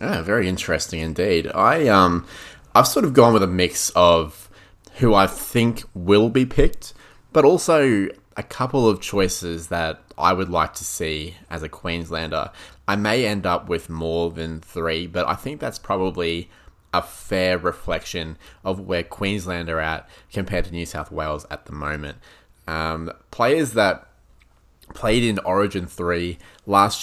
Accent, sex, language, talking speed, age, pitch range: Australian, male, English, 160 wpm, 20-39, 80-100 Hz